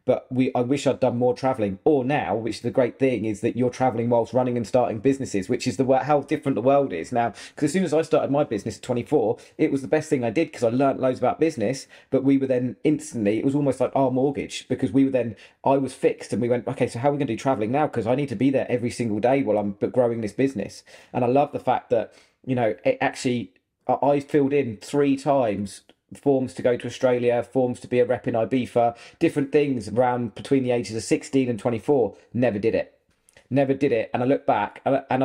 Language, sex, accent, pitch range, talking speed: English, male, British, 120-145 Hz, 250 wpm